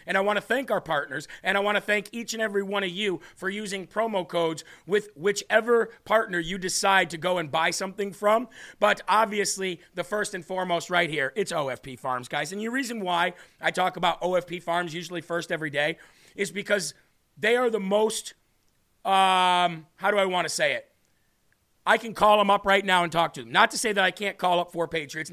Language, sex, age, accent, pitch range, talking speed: English, male, 40-59, American, 175-210 Hz, 220 wpm